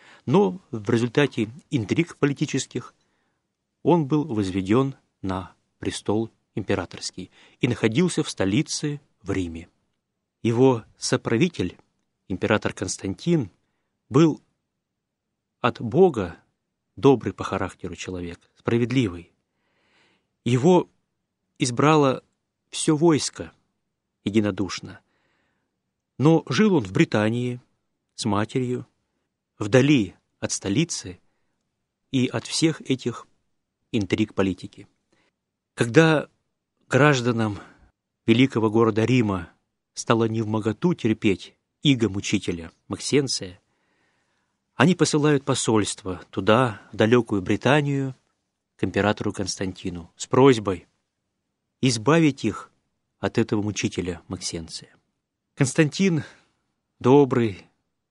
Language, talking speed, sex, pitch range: Russian, 85 wpm, male, 100-140 Hz